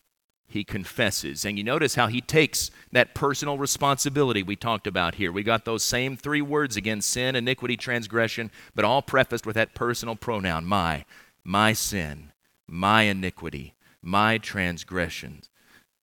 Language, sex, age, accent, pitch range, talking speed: English, male, 40-59, American, 100-125 Hz, 145 wpm